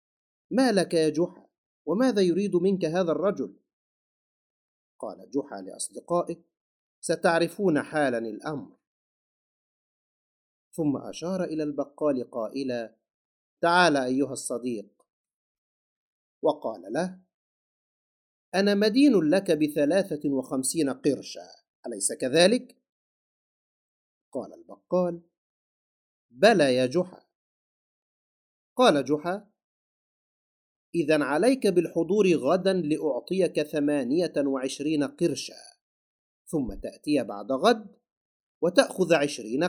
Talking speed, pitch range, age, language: 80 wpm, 145-190 Hz, 50-69, Arabic